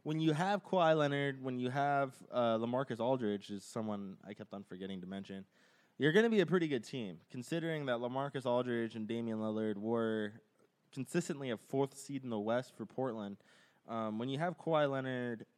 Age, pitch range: 20-39, 105-140 Hz